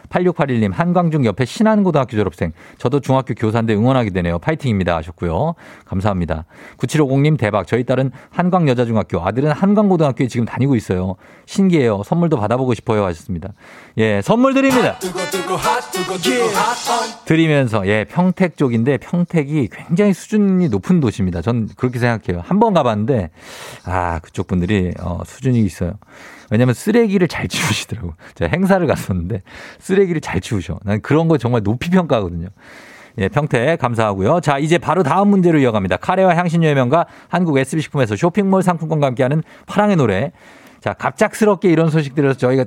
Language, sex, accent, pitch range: Korean, male, native, 110-175 Hz